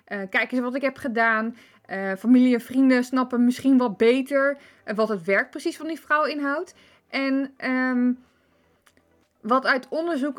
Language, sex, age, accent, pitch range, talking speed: Dutch, female, 20-39, Dutch, 195-260 Hz, 155 wpm